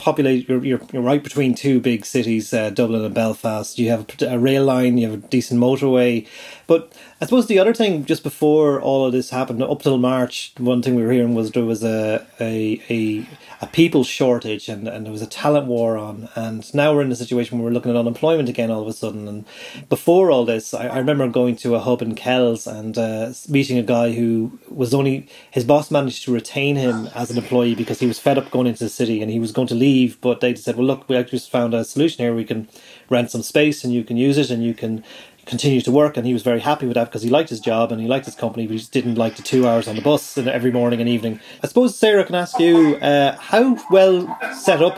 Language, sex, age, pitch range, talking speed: English, male, 30-49, 115-140 Hz, 255 wpm